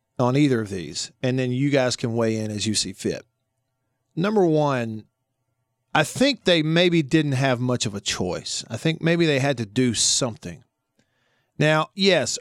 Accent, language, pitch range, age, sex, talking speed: American, English, 115-155 Hz, 40-59, male, 180 wpm